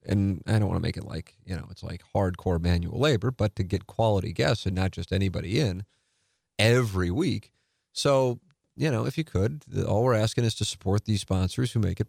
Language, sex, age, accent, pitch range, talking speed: English, male, 30-49, American, 95-115 Hz, 220 wpm